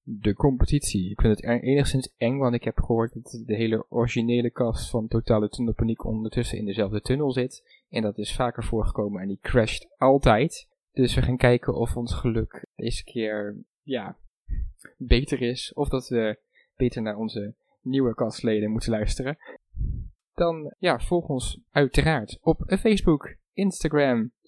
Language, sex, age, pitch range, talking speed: Dutch, male, 20-39, 110-145 Hz, 155 wpm